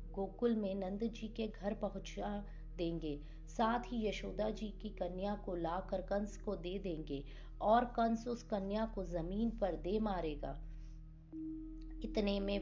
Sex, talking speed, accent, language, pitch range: female, 150 wpm, native, Hindi, 175-225 Hz